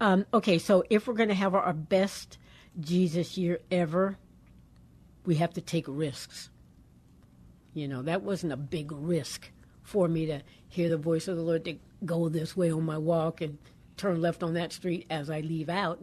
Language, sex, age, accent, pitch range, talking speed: English, female, 60-79, American, 155-180 Hz, 190 wpm